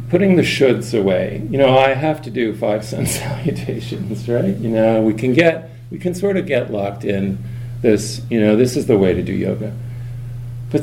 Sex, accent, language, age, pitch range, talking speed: male, American, English, 40-59, 105-120 Hz, 205 wpm